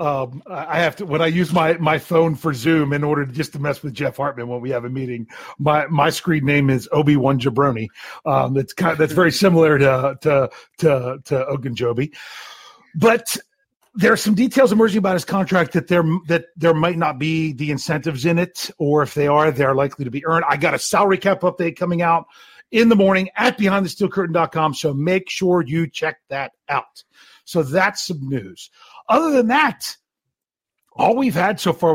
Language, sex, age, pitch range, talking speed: English, male, 40-59, 145-195 Hz, 205 wpm